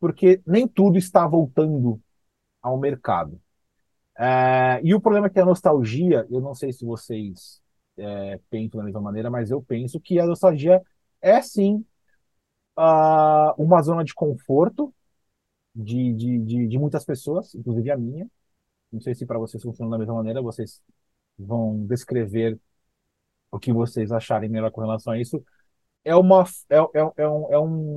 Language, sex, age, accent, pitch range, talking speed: Portuguese, male, 30-49, Brazilian, 120-180 Hz, 165 wpm